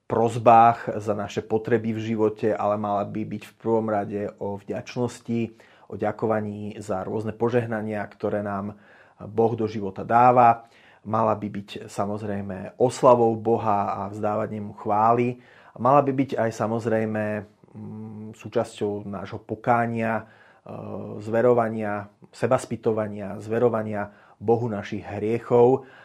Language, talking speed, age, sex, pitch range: Slovak, 115 wpm, 30-49, male, 105-120 Hz